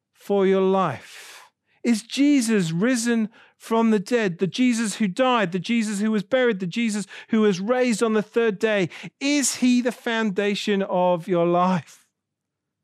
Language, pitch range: English, 150-220 Hz